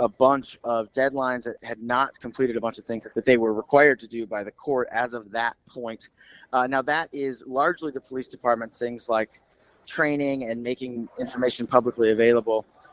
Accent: American